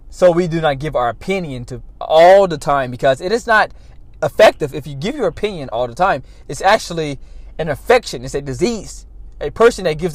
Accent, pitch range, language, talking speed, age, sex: American, 130-175 Hz, English, 205 wpm, 20-39, male